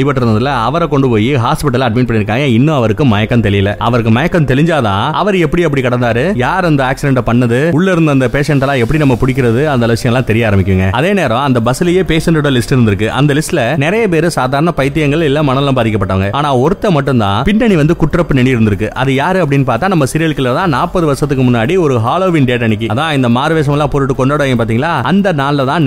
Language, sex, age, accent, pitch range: Tamil, male, 30-49, native, 120-155 Hz